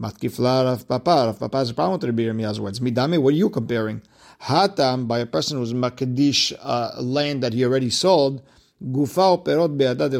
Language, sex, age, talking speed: English, male, 50-69, 105 wpm